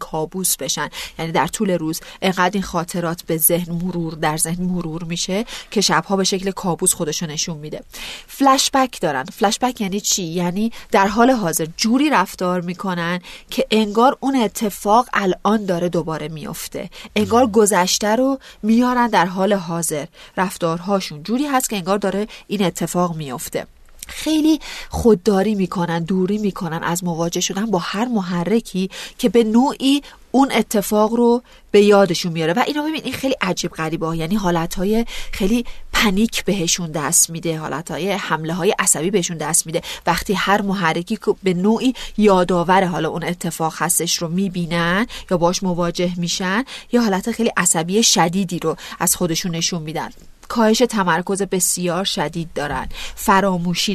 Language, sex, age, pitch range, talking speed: Persian, female, 30-49, 170-215 Hz, 150 wpm